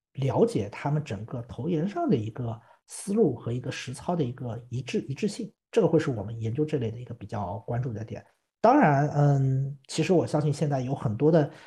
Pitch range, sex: 120-160 Hz, male